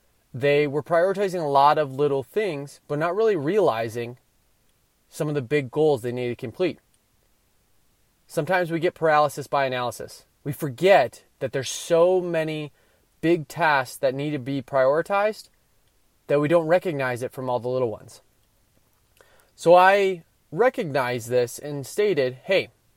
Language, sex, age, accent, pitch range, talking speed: English, male, 30-49, American, 125-170 Hz, 150 wpm